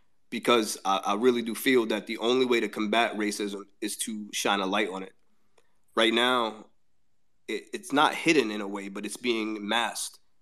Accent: American